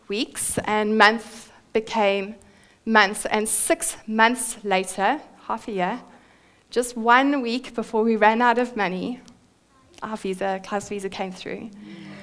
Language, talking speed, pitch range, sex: English, 130 wpm, 210-250 Hz, female